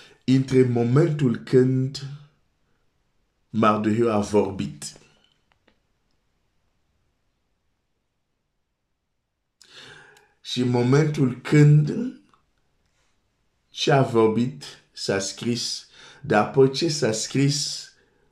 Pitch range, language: 110-145 Hz, Romanian